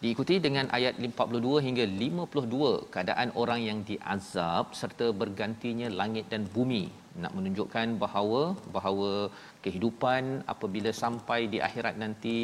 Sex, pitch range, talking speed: male, 95-120 Hz, 120 wpm